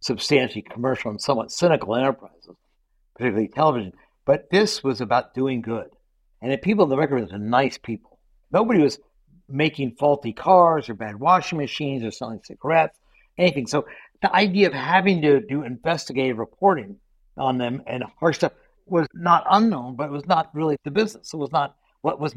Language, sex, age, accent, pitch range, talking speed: English, male, 60-79, American, 125-175 Hz, 175 wpm